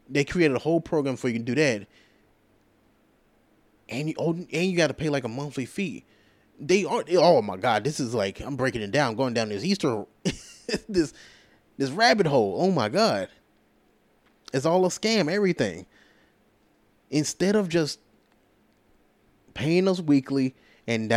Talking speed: 155 wpm